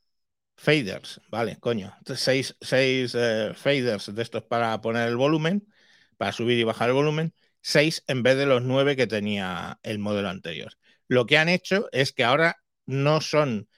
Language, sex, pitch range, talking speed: Spanish, male, 120-145 Hz, 175 wpm